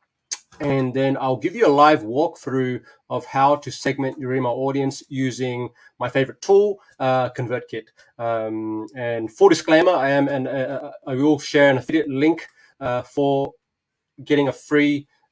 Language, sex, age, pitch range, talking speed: English, male, 20-39, 125-145 Hz, 155 wpm